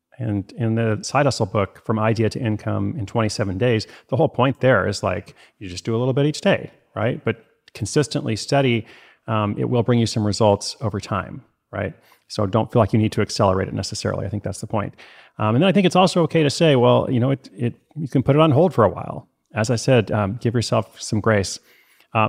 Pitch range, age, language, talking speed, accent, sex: 105-125 Hz, 30-49, English, 240 wpm, American, male